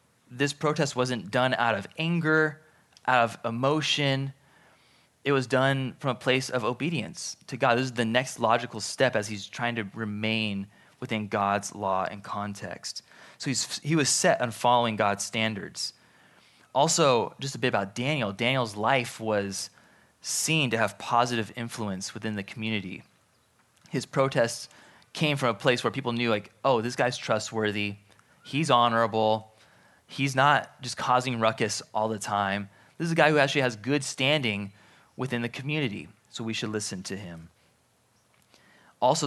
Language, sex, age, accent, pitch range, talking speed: English, male, 20-39, American, 110-135 Hz, 160 wpm